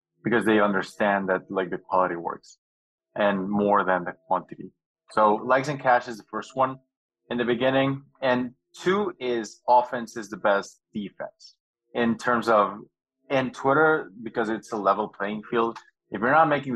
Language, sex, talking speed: English, male, 170 wpm